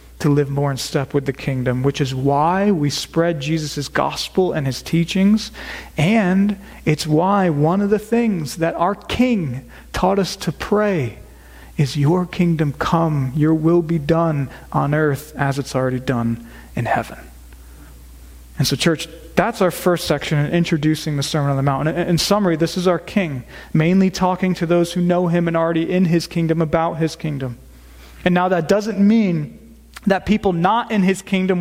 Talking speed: 180 wpm